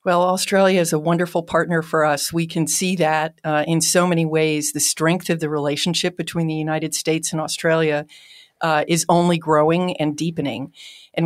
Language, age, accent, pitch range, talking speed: English, 50-69, American, 155-180 Hz, 185 wpm